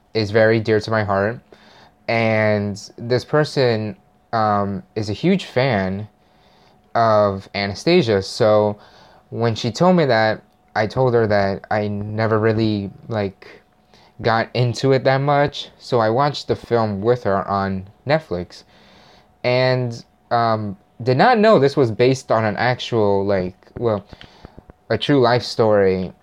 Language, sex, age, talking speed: English, male, 20-39, 140 wpm